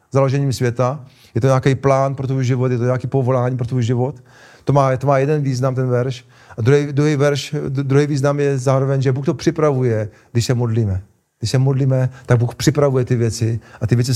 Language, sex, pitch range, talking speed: Czech, male, 125-150 Hz, 210 wpm